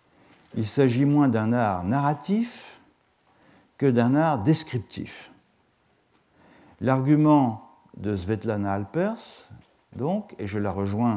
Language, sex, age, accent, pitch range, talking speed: French, male, 50-69, French, 110-165 Hz, 100 wpm